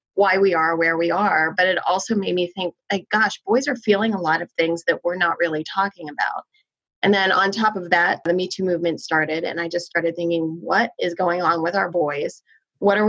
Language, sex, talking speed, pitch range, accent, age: English, female, 240 wpm, 170-200 Hz, American, 20-39